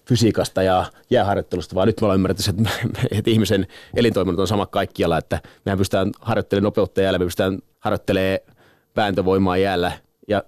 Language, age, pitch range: Finnish, 30-49, 90-110 Hz